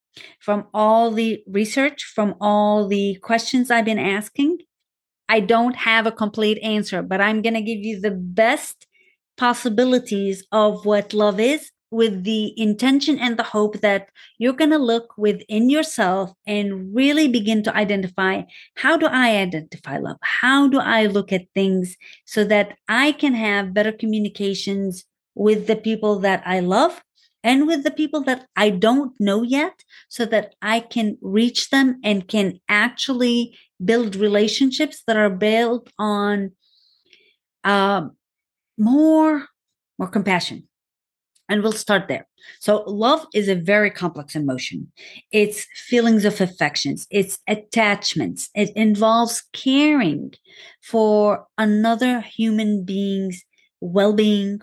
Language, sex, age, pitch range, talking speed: English, female, 40-59, 200-240 Hz, 135 wpm